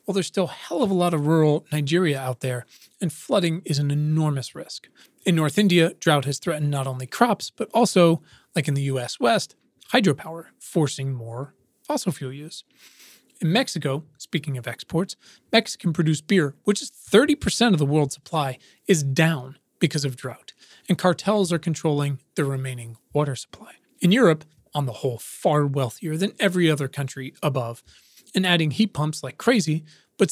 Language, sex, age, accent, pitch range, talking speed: English, male, 30-49, American, 140-185 Hz, 170 wpm